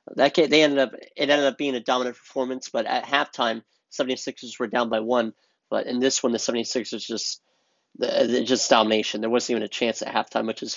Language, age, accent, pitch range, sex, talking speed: English, 30-49, American, 120-145 Hz, male, 210 wpm